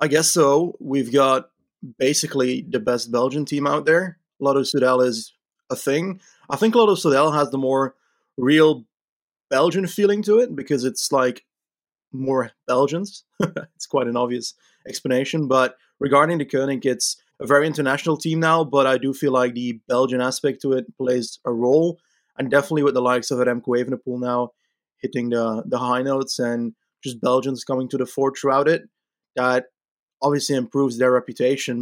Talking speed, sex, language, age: 170 wpm, male, English, 20-39